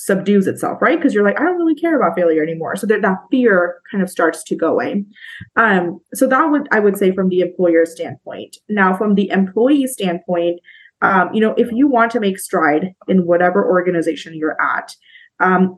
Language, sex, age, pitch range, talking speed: English, female, 20-39, 175-225 Hz, 205 wpm